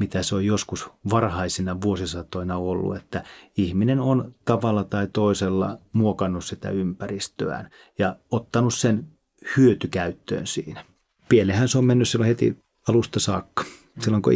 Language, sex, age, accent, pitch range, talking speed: Finnish, male, 30-49, native, 95-110 Hz, 130 wpm